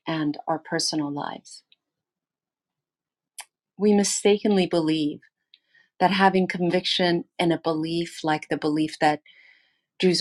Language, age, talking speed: English, 40-59, 105 wpm